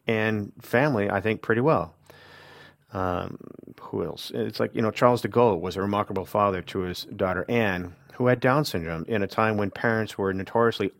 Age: 40-59